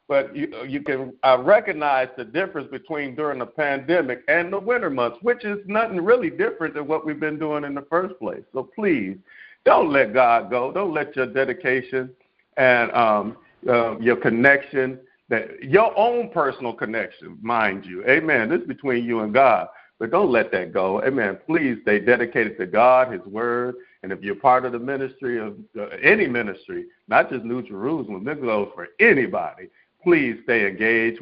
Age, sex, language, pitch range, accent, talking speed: 50-69, male, English, 120-160 Hz, American, 180 wpm